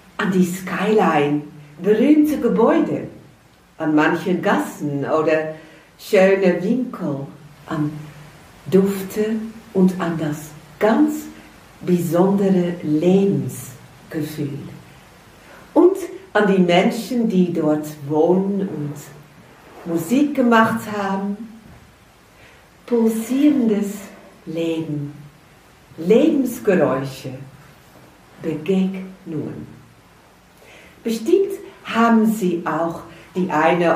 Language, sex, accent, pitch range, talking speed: German, female, German, 155-205 Hz, 70 wpm